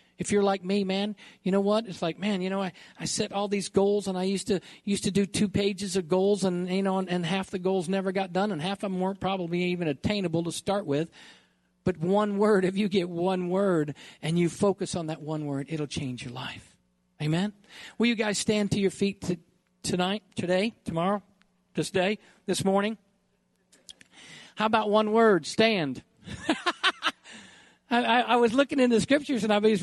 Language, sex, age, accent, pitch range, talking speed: English, male, 50-69, American, 150-205 Hz, 205 wpm